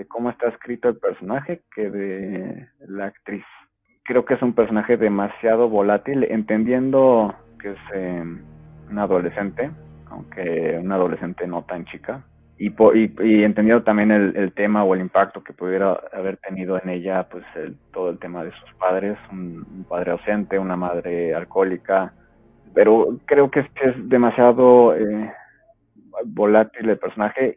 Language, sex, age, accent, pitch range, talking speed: Spanish, male, 30-49, Mexican, 95-115 Hz, 155 wpm